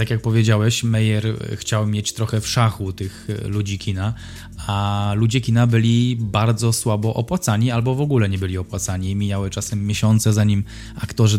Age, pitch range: 20-39, 105-115 Hz